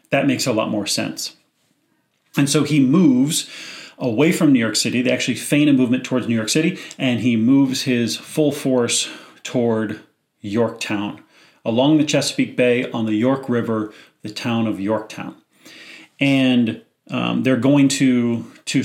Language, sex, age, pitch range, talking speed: English, male, 40-59, 120-145 Hz, 160 wpm